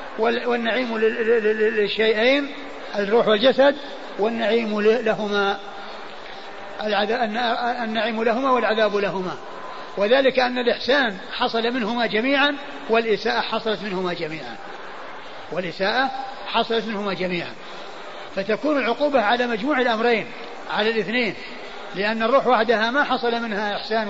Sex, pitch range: male, 205-250 Hz